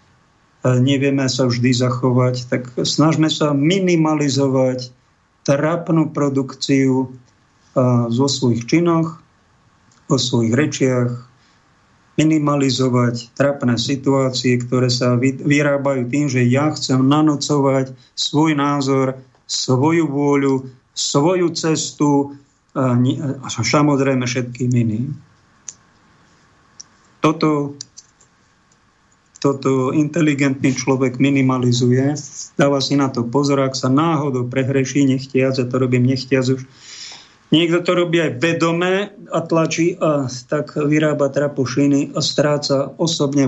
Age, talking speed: 50-69, 100 wpm